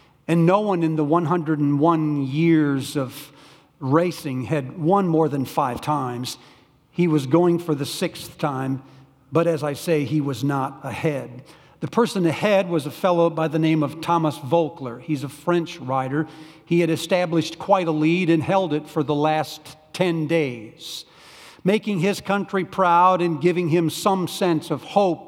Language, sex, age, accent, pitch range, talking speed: English, male, 50-69, American, 150-185 Hz, 170 wpm